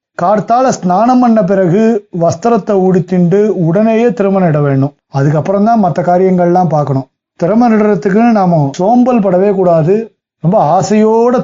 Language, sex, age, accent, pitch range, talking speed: Tamil, male, 30-49, native, 145-200 Hz, 125 wpm